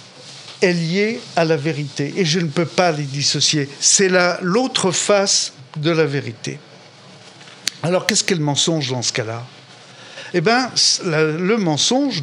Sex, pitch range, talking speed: male, 150-195 Hz, 150 wpm